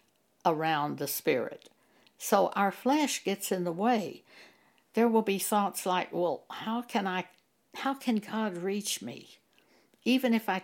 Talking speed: 150 wpm